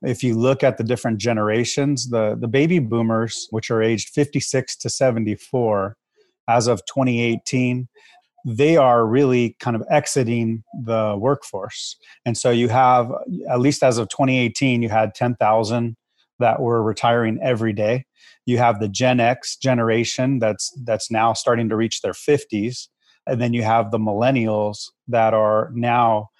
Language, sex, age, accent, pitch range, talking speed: English, male, 30-49, American, 110-125 Hz, 155 wpm